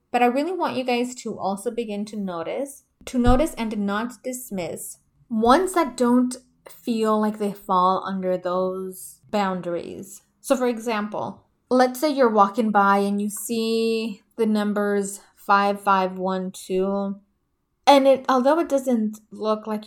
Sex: female